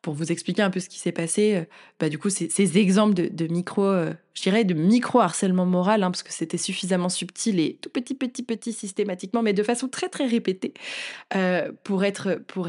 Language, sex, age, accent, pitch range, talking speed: French, female, 20-39, French, 180-225 Hz, 220 wpm